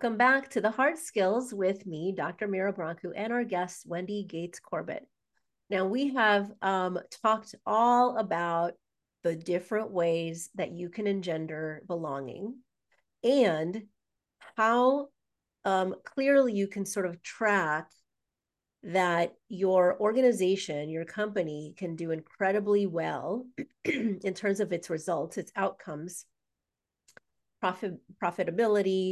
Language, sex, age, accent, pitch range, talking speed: English, female, 40-59, American, 175-220 Hz, 115 wpm